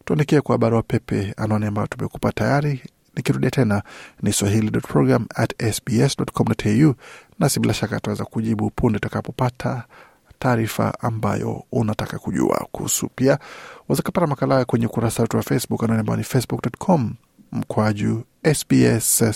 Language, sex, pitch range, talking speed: Swahili, male, 110-140 Hz, 115 wpm